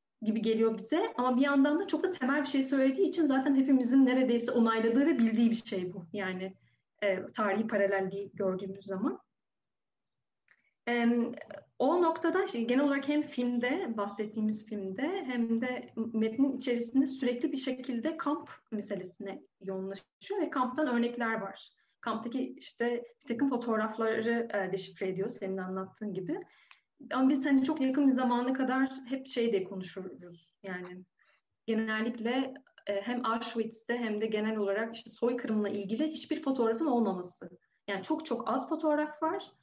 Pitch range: 210-270 Hz